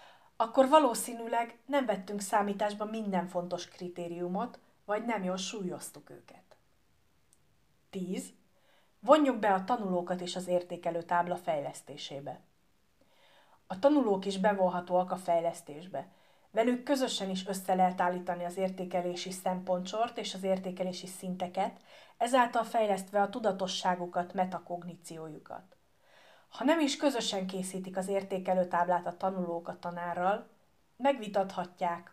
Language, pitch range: Hungarian, 175-210 Hz